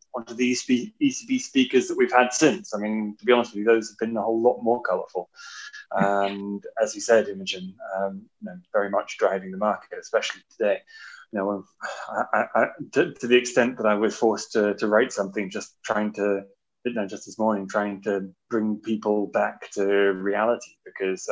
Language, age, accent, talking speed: English, 20-39, British, 205 wpm